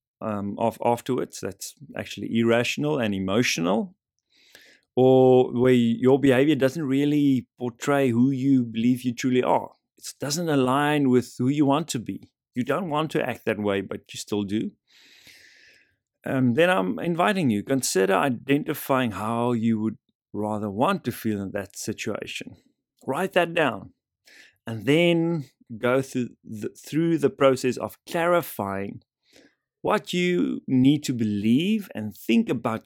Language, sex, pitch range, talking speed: English, male, 110-140 Hz, 145 wpm